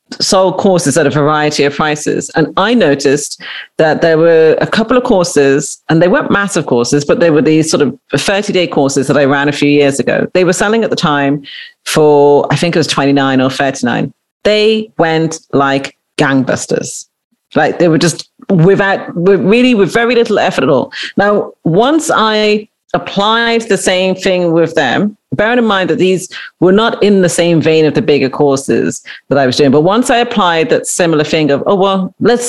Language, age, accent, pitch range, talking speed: English, 40-59, British, 150-225 Hz, 195 wpm